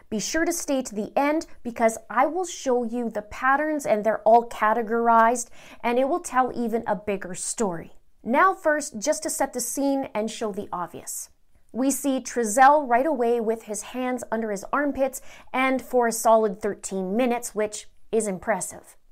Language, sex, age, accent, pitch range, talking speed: English, female, 30-49, American, 205-250 Hz, 180 wpm